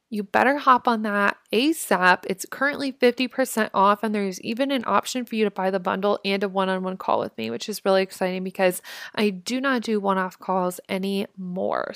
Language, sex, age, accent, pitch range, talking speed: English, female, 20-39, American, 195-255 Hz, 210 wpm